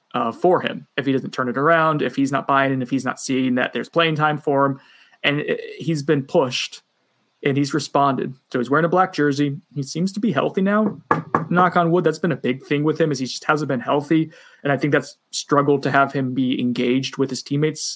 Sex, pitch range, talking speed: male, 135-160 Hz, 245 wpm